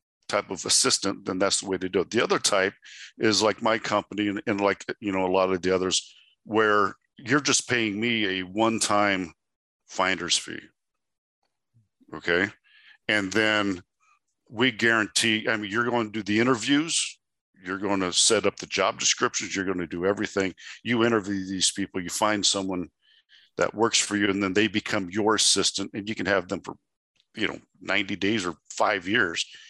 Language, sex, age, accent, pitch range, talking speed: English, male, 50-69, American, 95-110 Hz, 185 wpm